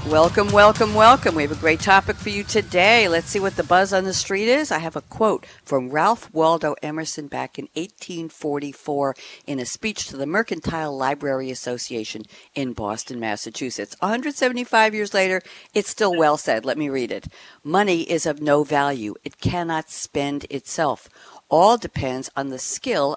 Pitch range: 135-185 Hz